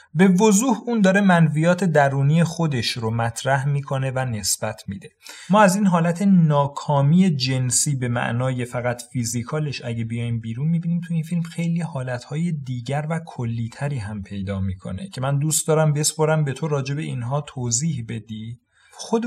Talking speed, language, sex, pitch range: 155 wpm, Persian, male, 115-150 Hz